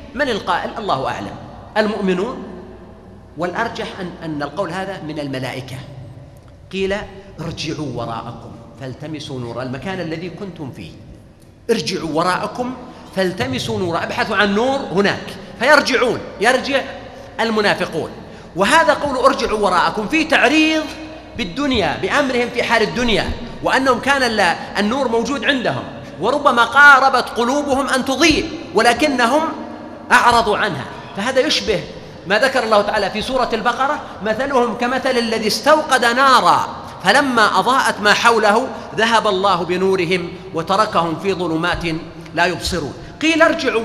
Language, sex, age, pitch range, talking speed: Arabic, male, 40-59, 175-255 Hz, 115 wpm